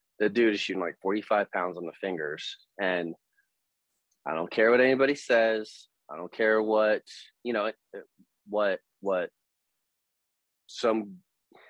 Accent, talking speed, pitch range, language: American, 135 wpm, 85-110 Hz, English